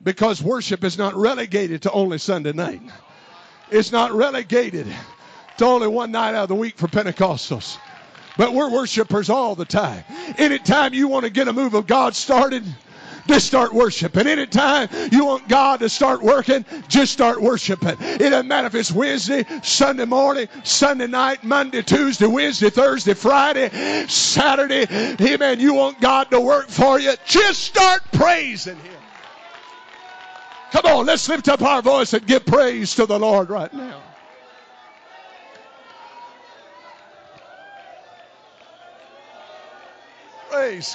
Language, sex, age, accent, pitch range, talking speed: English, male, 50-69, American, 210-275 Hz, 140 wpm